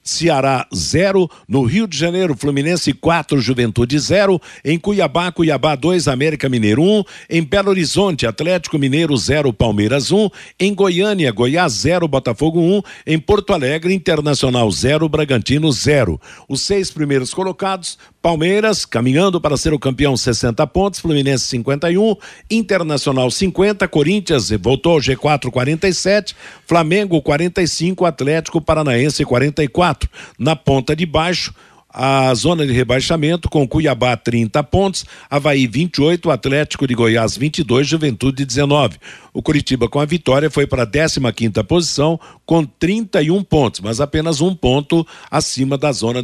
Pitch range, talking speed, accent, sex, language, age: 135-175 Hz, 140 wpm, Brazilian, male, Portuguese, 60-79